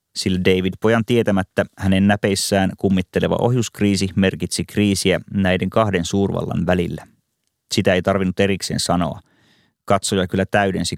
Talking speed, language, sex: 120 wpm, Finnish, male